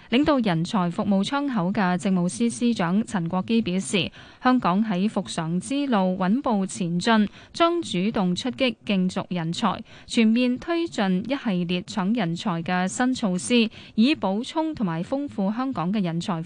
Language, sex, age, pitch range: Chinese, female, 20-39, 185-235 Hz